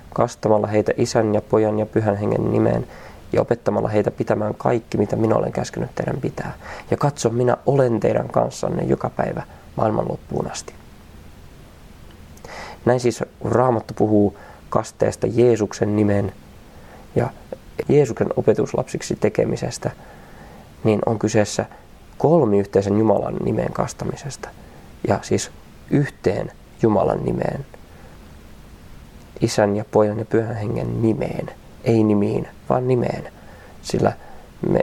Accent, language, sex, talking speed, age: native, Finnish, male, 115 wpm, 20-39